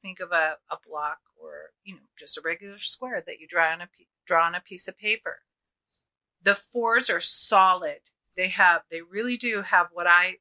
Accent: American